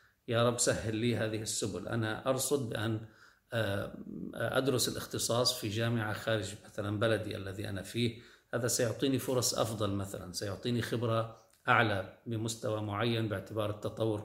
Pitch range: 110-145 Hz